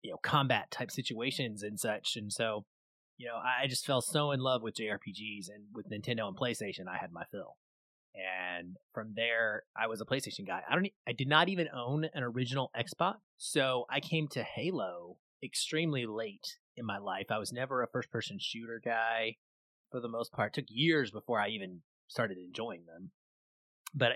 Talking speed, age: 190 wpm, 30-49